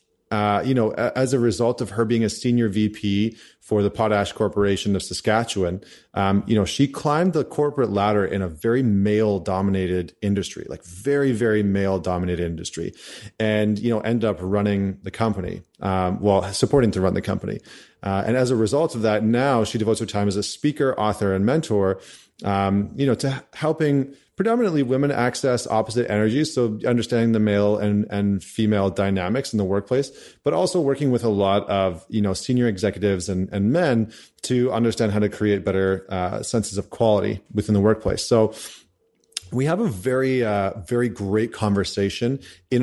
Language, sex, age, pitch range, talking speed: English, male, 30-49, 100-120 Hz, 180 wpm